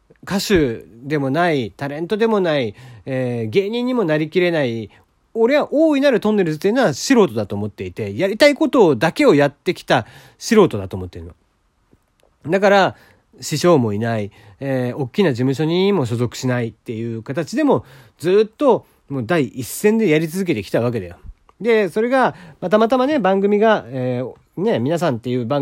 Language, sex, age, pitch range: Japanese, male, 40-59, 120-195 Hz